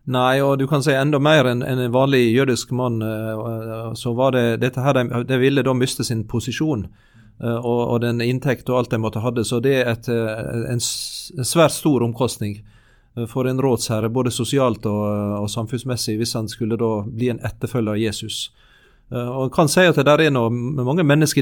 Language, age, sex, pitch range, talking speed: English, 40-59, male, 115-135 Hz, 215 wpm